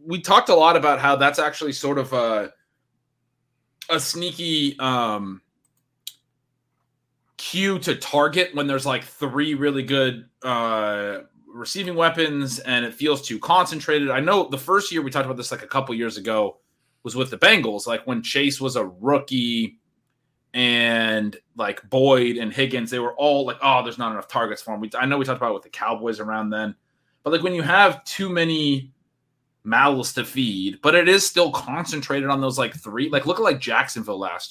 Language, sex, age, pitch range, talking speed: English, male, 20-39, 120-150 Hz, 190 wpm